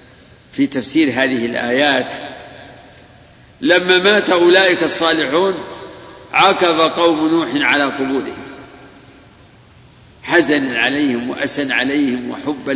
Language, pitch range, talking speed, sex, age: Arabic, 140-200 Hz, 85 wpm, male, 50-69